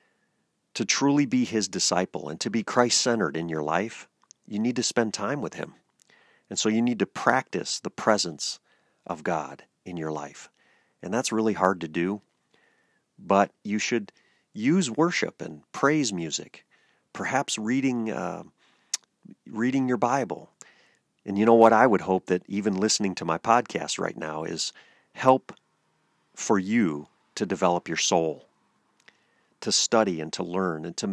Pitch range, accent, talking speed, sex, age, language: 90-120 Hz, American, 160 wpm, male, 40-59, English